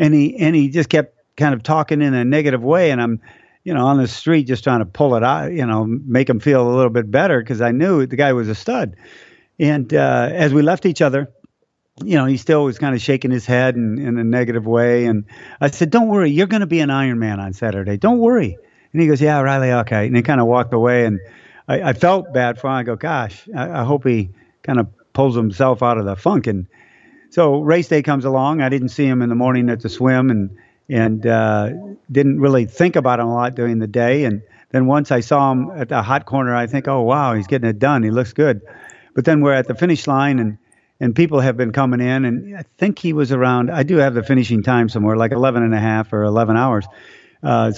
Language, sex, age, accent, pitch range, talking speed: English, male, 50-69, American, 120-150 Hz, 250 wpm